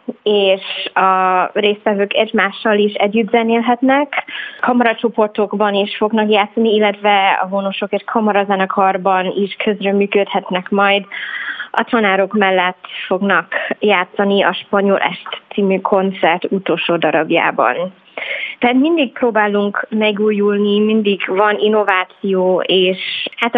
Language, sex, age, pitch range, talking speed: Hungarian, female, 20-39, 195-225 Hz, 105 wpm